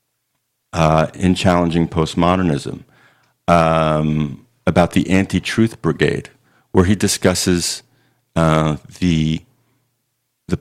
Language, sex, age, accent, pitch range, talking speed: English, male, 50-69, American, 80-110 Hz, 85 wpm